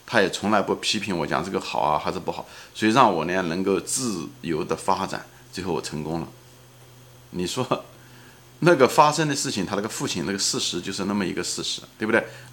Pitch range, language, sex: 110-135 Hz, Chinese, male